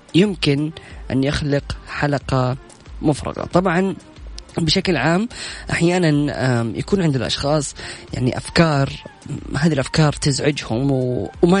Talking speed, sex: 95 wpm, female